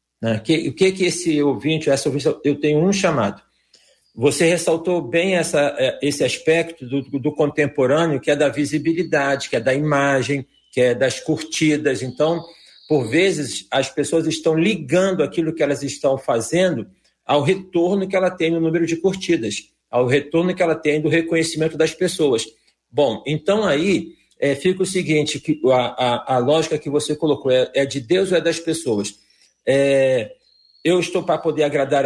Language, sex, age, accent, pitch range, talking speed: Portuguese, male, 50-69, Brazilian, 140-170 Hz, 170 wpm